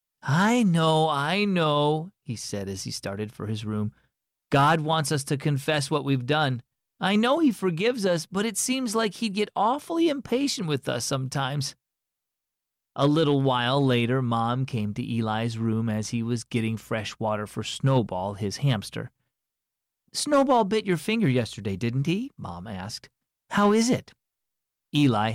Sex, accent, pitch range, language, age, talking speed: male, American, 115-195 Hz, English, 40-59, 160 wpm